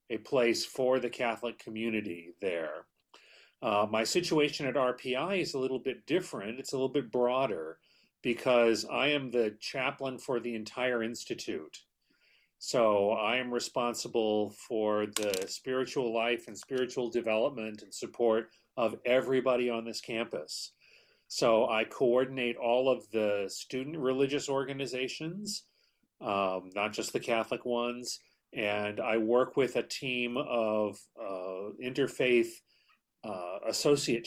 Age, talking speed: 40-59, 130 wpm